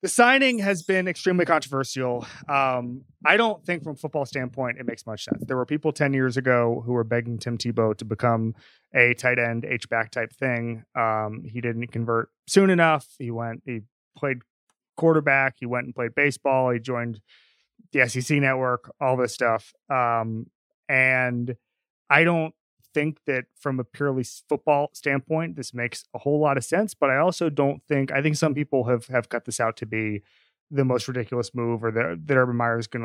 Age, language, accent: 30-49, English, American